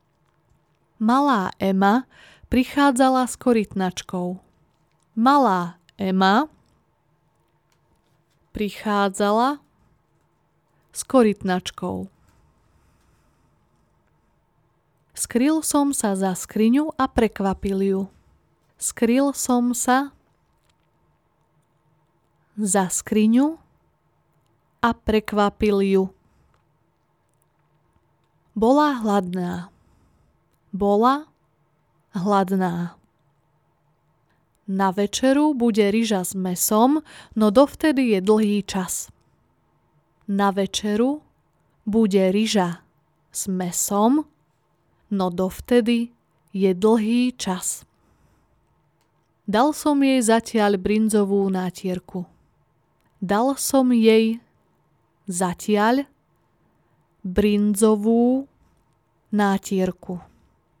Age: 20-39